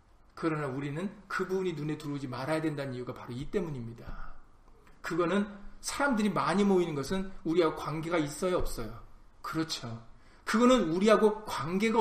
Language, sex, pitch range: Korean, male, 160-240 Hz